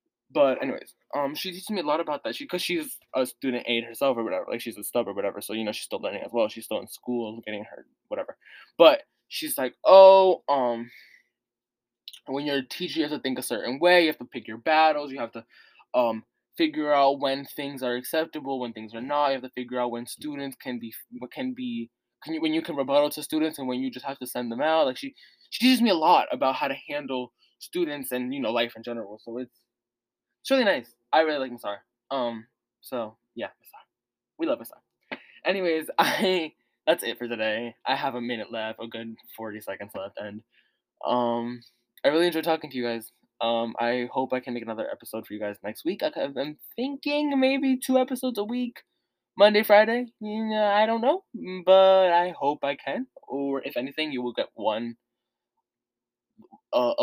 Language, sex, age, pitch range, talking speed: English, male, 20-39, 120-190 Hz, 215 wpm